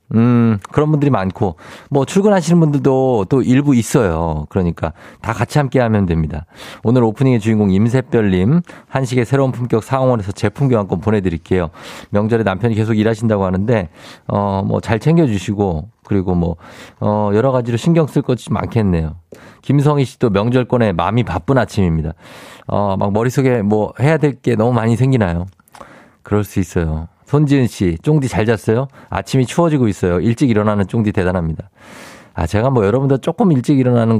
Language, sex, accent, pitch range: Korean, male, native, 100-140 Hz